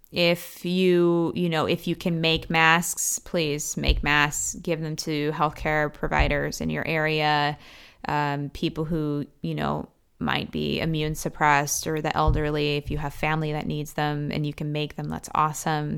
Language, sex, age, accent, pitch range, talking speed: English, female, 20-39, American, 150-170 Hz, 175 wpm